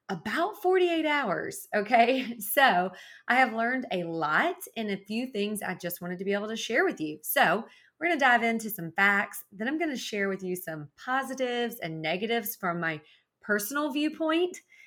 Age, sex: 30-49, female